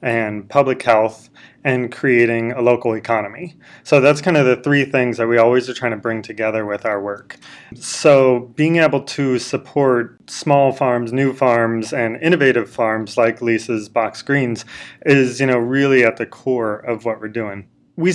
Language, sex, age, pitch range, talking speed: English, male, 20-39, 115-145 Hz, 180 wpm